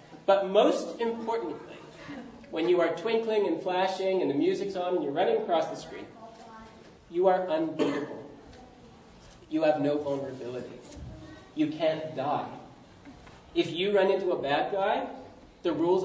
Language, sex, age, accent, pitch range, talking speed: English, male, 40-59, American, 155-235 Hz, 140 wpm